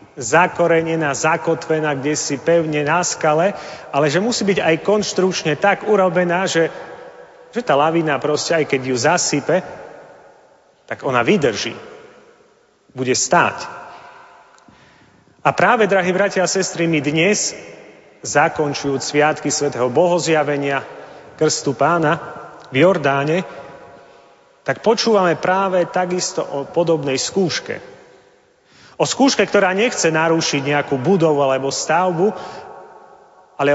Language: Slovak